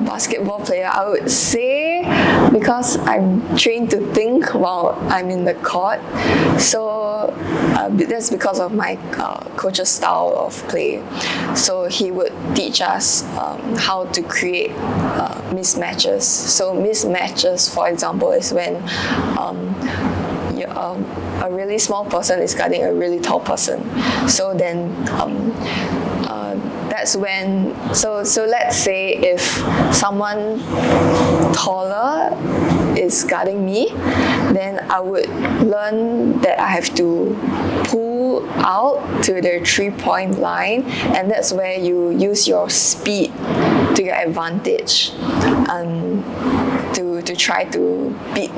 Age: 10-29